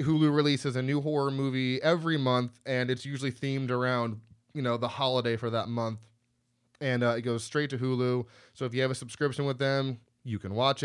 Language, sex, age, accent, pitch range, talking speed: English, male, 20-39, American, 120-150 Hz, 210 wpm